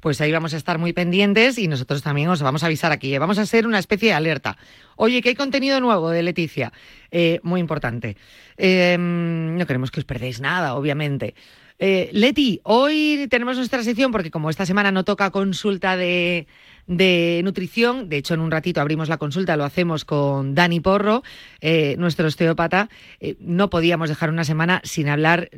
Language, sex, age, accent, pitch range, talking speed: Spanish, female, 30-49, Spanish, 160-205 Hz, 190 wpm